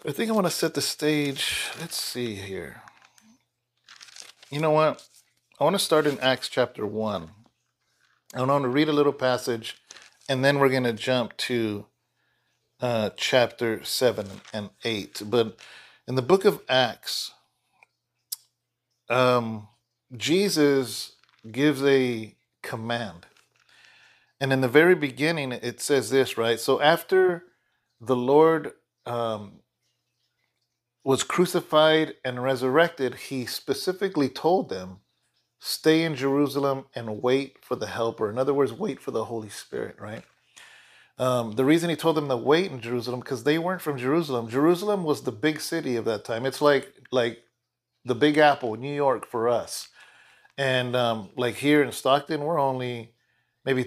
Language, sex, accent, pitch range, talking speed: English, male, American, 120-150 Hz, 150 wpm